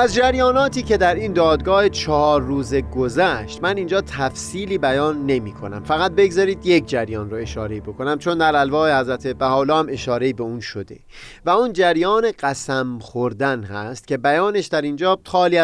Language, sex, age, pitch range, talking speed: Persian, male, 30-49, 135-190 Hz, 170 wpm